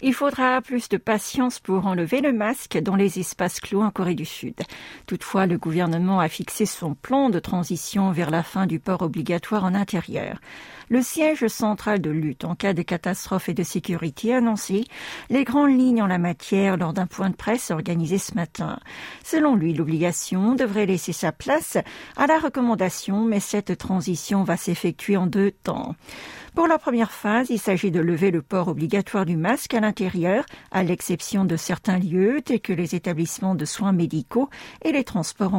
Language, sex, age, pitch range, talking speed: French, female, 50-69, 180-230 Hz, 185 wpm